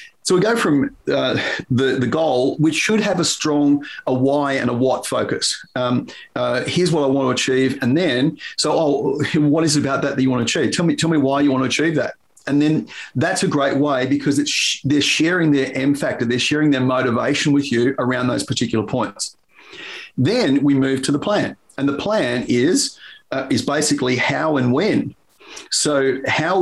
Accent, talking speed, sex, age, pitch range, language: Australian, 210 wpm, male, 40-59, 130-155 Hz, English